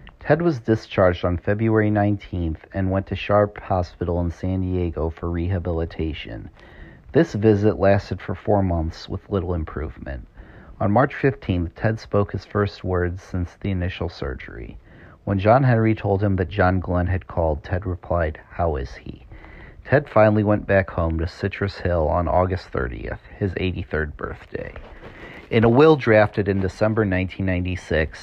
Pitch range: 85-105 Hz